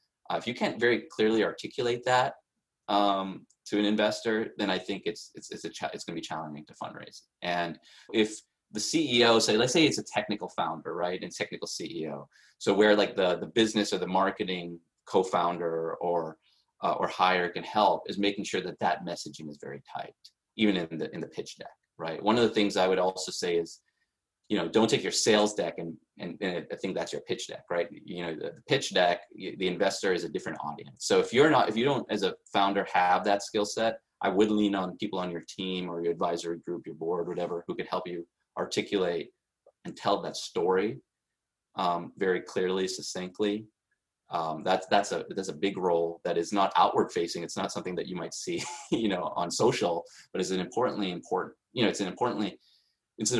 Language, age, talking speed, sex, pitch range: English, 20-39, 215 wpm, male, 85-110 Hz